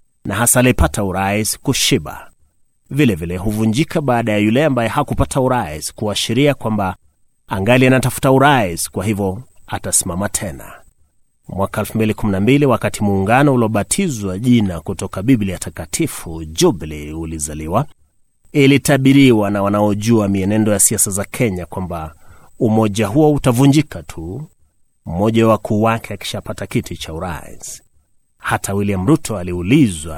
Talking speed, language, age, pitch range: 120 wpm, Swahili, 30-49, 95-125 Hz